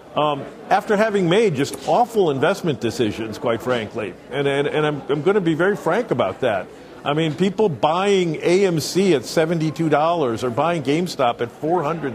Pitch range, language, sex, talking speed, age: 140-170 Hz, English, male, 185 wpm, 50-69